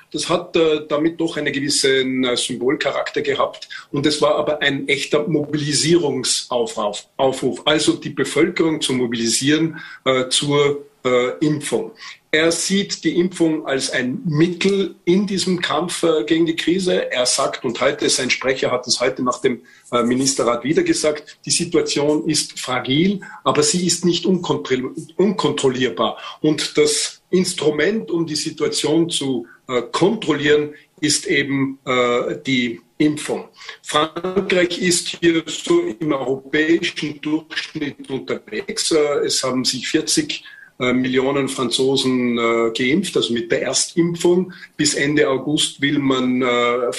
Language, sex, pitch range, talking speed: German, male, 130-170 Hz, 135 wpm